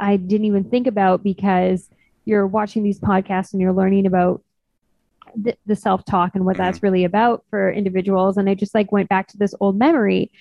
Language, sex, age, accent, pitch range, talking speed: English, female, 20-39, American, 185-205 Hz, 195 wpm